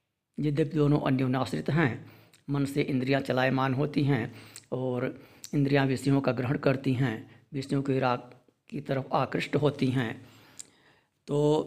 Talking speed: 135 wpm